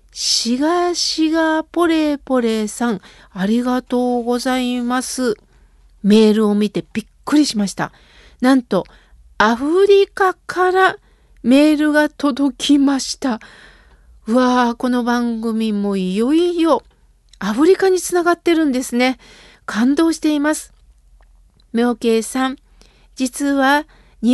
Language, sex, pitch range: Japanese, female, 230-310 Hz